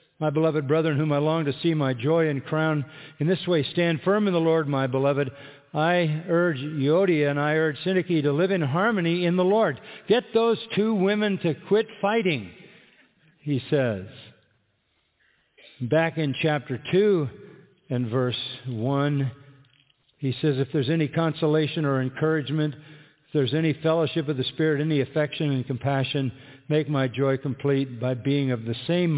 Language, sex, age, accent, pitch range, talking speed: English, male, 50-69, American, 130-160 Hz, 165 wpm